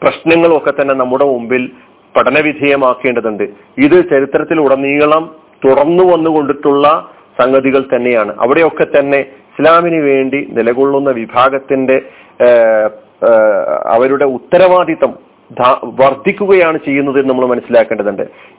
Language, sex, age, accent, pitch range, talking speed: Malayalam, male, 40-59, native, 130-170 Hz, 80 wpm